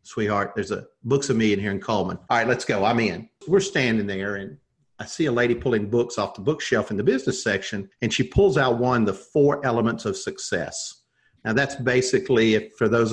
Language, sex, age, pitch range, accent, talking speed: English, male, 50-69, 110-140 Hz, American, 220 wpm